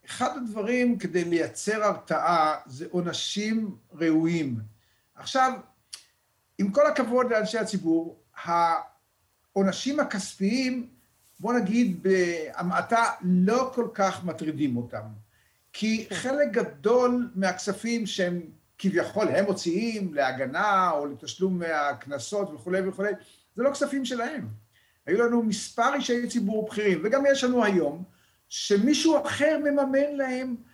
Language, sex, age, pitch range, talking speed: Hebrew, male, 50-69, 185-255 Hz, 110 wpm